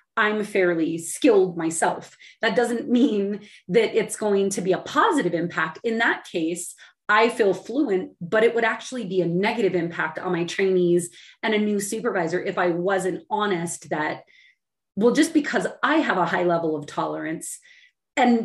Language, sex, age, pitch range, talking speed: English, female, 30-49, 180-255 Hz, 170 wpm